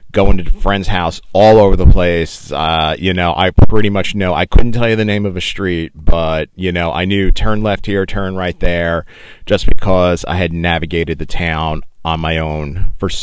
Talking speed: 215 wpm